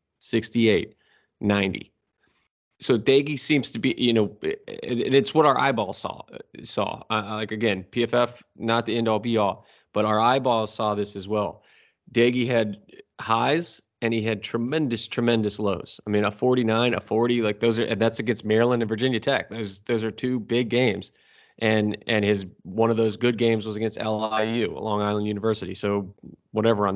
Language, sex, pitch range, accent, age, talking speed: English, male, 105-125 Hz, American, 30-49, 175 wpm